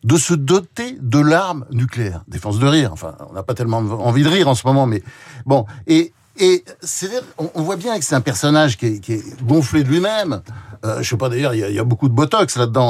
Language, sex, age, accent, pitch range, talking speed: French, male, 60-79, French, 125-180 Hz, 255 wpm